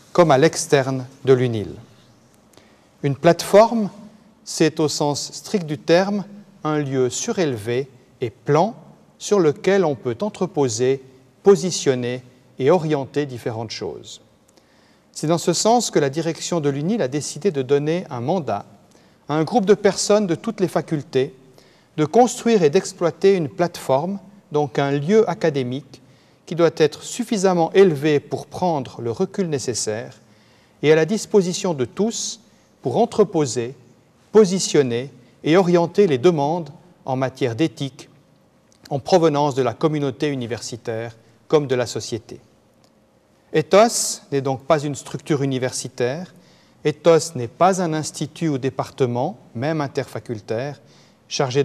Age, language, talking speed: 40-59, French, 135 wpm